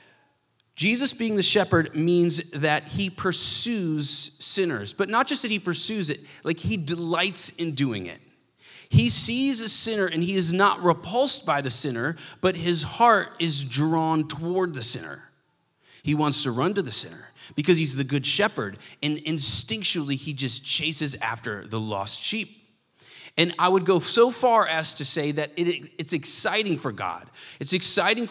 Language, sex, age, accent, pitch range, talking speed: English, male, 30-49, American, 125-170 Hz, 165 wpm